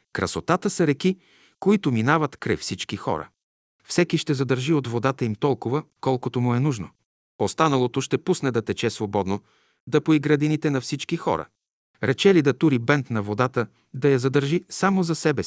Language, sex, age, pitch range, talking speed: Bulgarian, male, 50-69, 120-160 Hz, 165 wpm